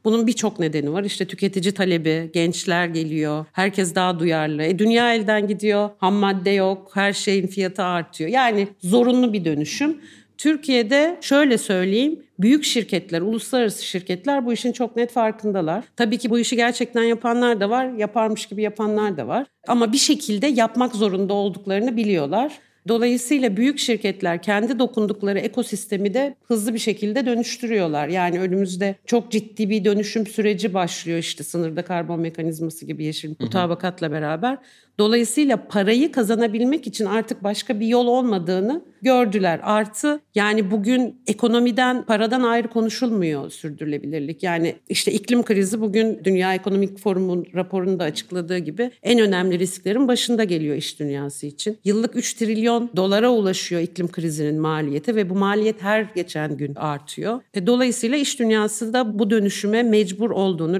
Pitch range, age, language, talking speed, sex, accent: 185-235 Hz, 50-69, Turkish, 145 wpm, female, native